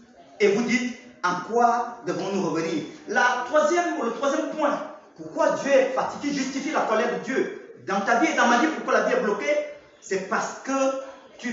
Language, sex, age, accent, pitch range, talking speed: French, male, 40-59, French, 220-300 Hz, 180 wpm